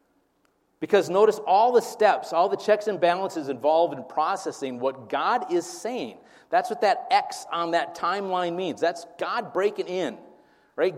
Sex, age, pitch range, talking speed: male, 40-59, 140-225 Hz, 165 wpm